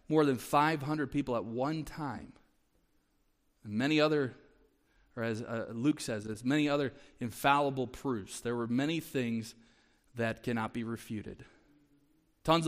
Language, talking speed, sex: English, 135 wpm, male